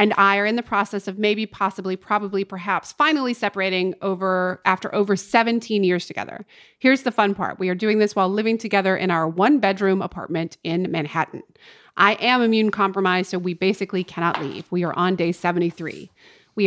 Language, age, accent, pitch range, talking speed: English, 30-49, American, 170-210 Hz, 180 wpm